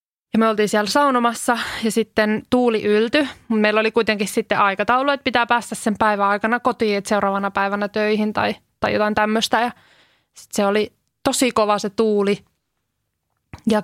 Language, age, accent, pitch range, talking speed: Finnish, 20-39, native, 205-230 Hz, 165 wpm